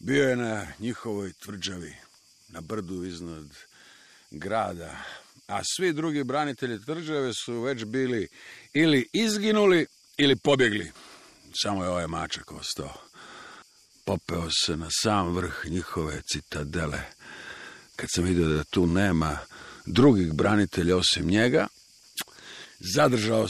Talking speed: 110 wpm